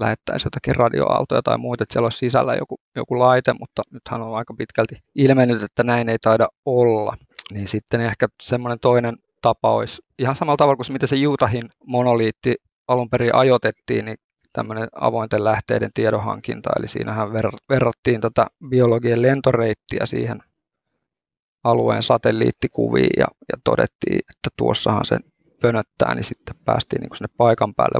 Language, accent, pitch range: Finnish, native, 110-125 Hz